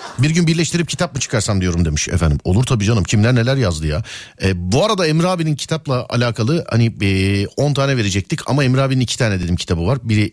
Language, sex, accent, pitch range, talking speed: Turkish, male, native, 105-170 Hz, 215 wpm